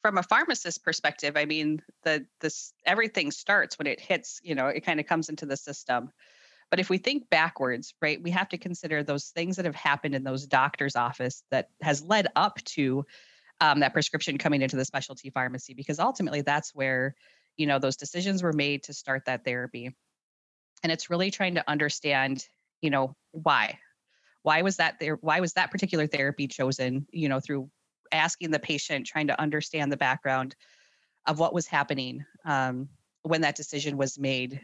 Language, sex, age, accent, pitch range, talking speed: English, female, 30-49, American, 135-160 Hz, 185 wpm